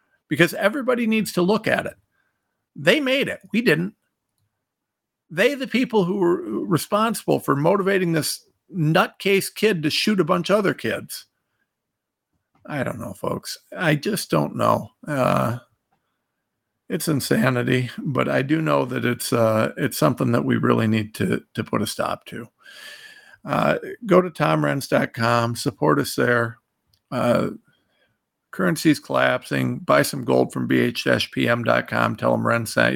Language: English